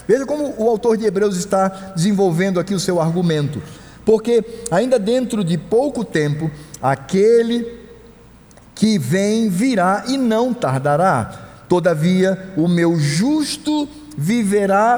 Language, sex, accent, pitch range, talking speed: Portuguese, male, Brazilian, 165-225 Hz, 120 wpm